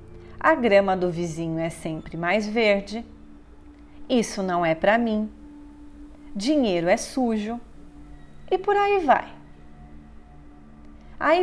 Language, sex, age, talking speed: Portuguese, female, 40-59, 110 wpm